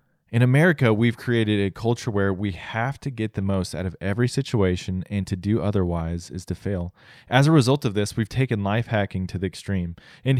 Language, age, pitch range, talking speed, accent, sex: English, 20-39, 95-125 Hz, 215 wpm, American, male